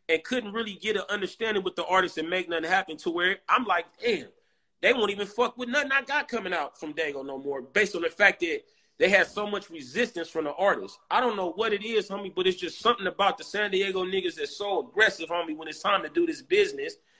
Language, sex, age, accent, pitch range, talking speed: English, male, 30-49, American, 175-225 Hz, 250 wpm